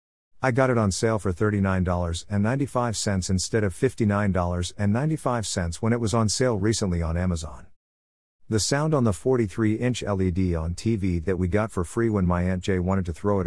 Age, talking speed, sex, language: 50-69, 175 wpm, male, English